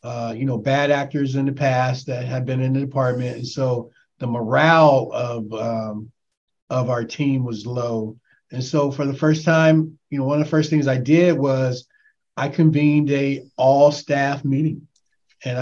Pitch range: 130-150 Hz